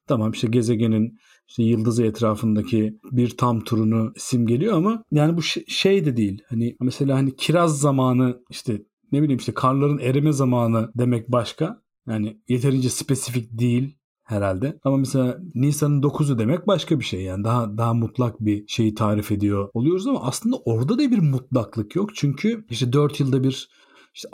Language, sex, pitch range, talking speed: Turkish, male, 115-150 Hz, 165 wpm